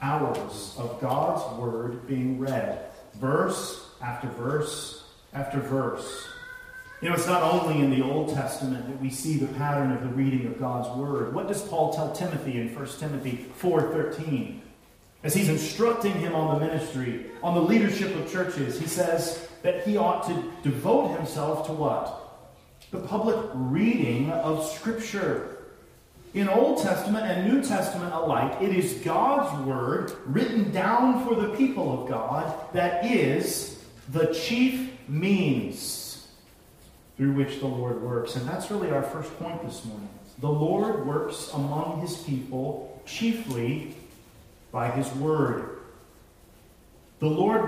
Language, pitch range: English, 135-195 Hz